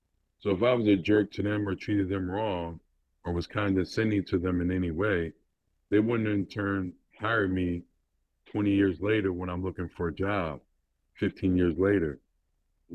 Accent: American